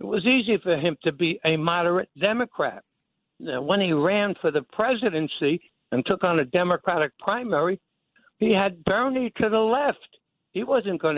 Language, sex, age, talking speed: English, male, 60-79, 165 wpm